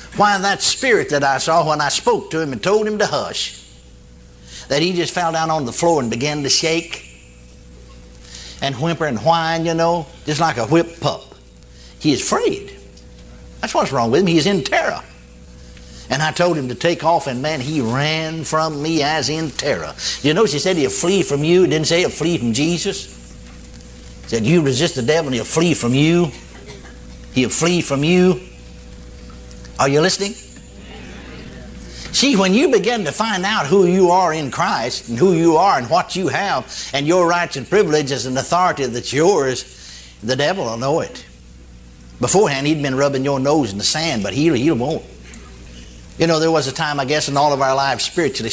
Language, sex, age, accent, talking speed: English, male, 60-79, American, 200 wpm